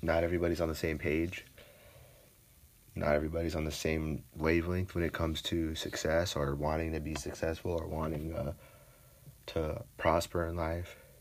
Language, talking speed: English, 155 wpm